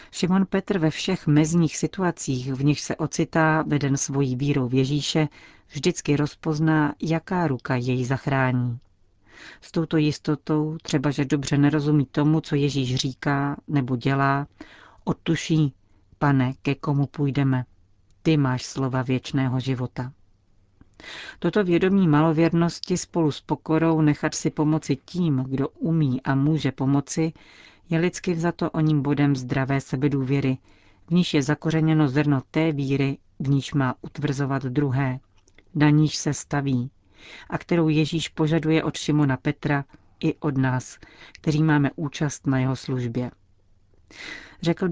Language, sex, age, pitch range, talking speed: Czech, female, 40-59, 130-155 Hz, 135 wpm